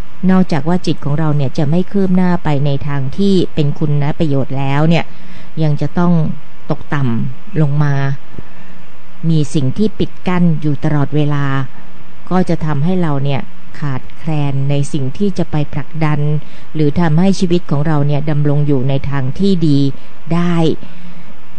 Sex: female